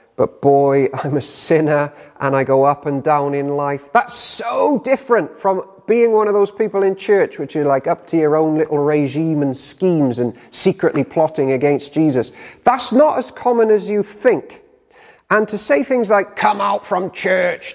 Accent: British